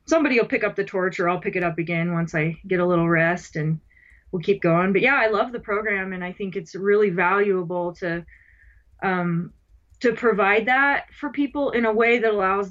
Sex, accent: female, American